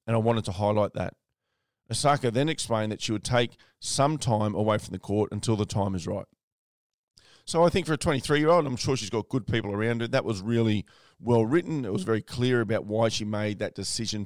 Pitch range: 105-130 Hz